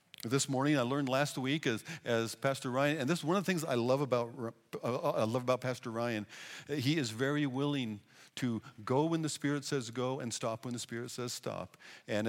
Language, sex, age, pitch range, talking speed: English, male, 50-69, 115-150 Hz, 220 wpm